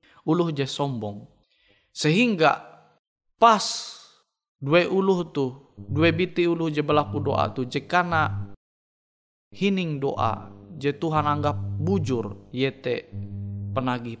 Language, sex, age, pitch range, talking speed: Indonesian, male, 20-39, 115-170 Hz, 105 wpm